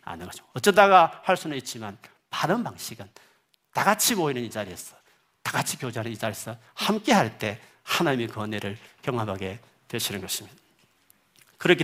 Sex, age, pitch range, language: male, 40-59, 125-200 Hz, Korean